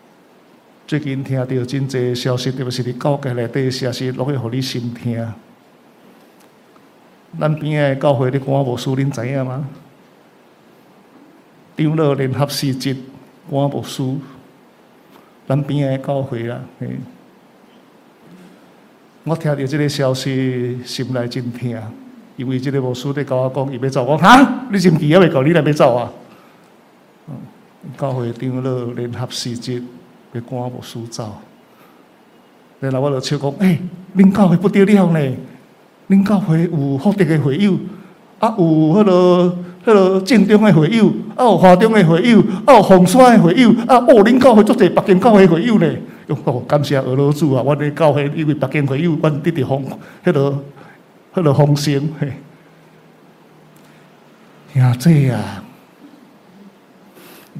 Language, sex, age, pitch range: Chinese, male, 50-69, 130-180 Hz